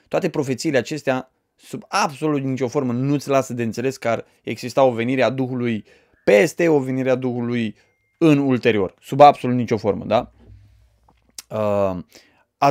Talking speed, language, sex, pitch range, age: 150 wpm, Romanian, male, 130-180 Hz, 20-39